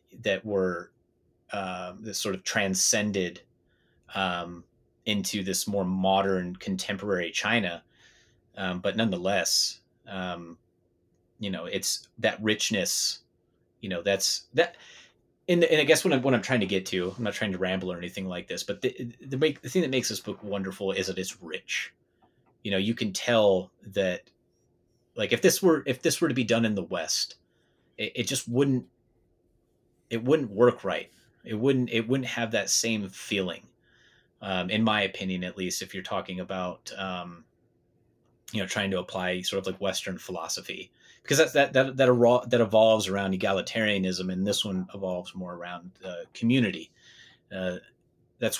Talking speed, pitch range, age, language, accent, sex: 170 wpm, 95-115 Hz, 30-49, English, American, male